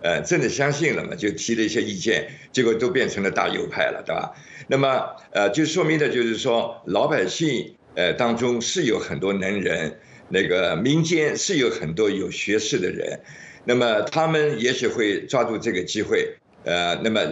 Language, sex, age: Chinese, male, 60-79